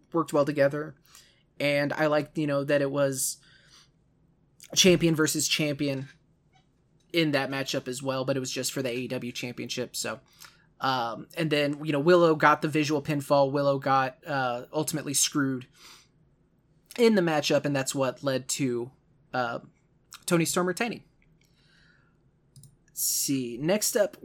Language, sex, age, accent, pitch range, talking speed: English, male, 20-39, American, 140-170 Hz, 145 wpm